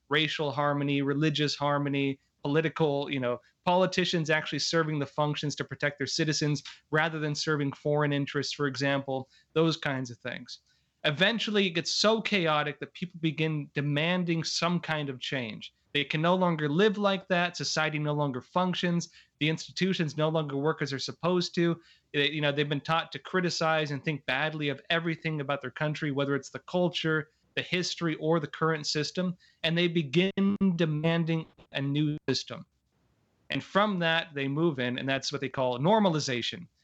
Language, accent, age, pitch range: English, American, 30-49, 140-165 Hz